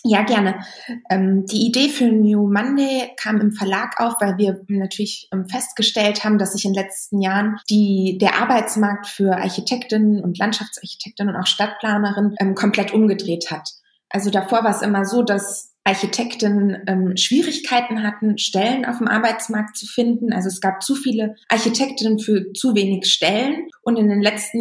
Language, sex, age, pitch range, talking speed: German, female, 20-39, 195-230 Hz, 155 wpm